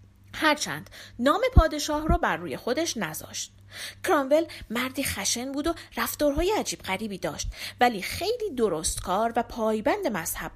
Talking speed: 140 wpm